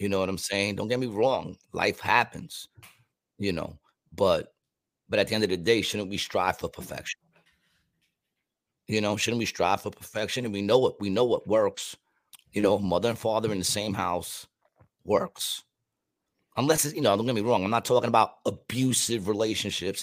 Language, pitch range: English, 105-130 Hz